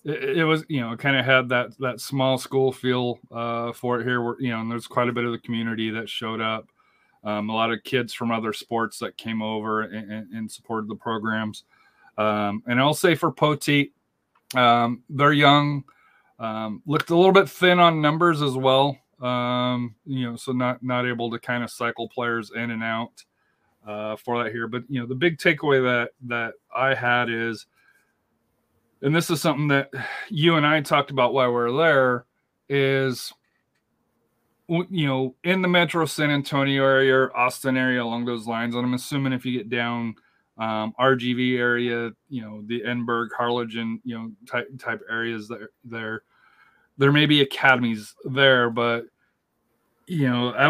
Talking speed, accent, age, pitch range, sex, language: 185 wpm, American, 30-49, 115-135 Hz, male, English